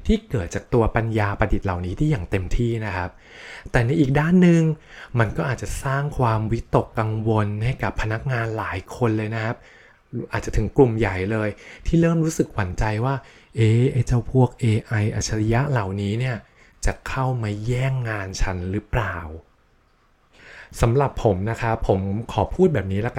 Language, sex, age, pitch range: Thai, male, 20-39, 105-135 Hz